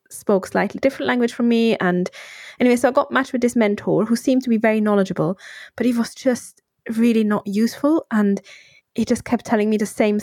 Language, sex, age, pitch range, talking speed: English, female, 20-39, 200-240 Hz, 210 wpm